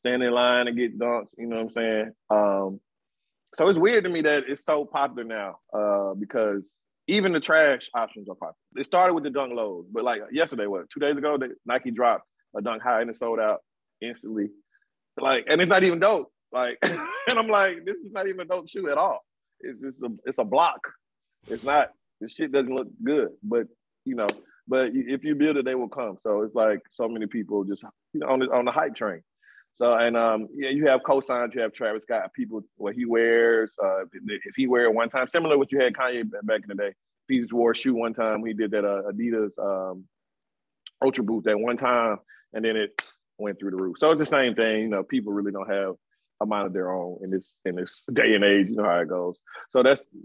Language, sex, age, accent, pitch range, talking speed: English, male, 20-39, American, 105-140 Hz, 240 wpm